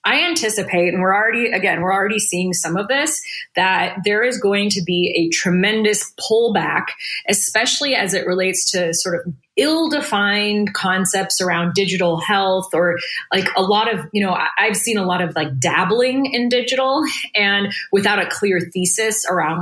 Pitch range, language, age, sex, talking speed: 175-205 Hz, English, 20-39, female, 170 wpm